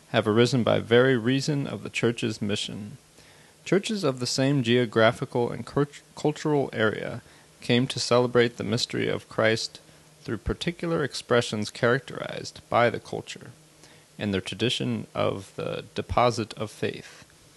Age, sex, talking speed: 30-49, male, 135 wpm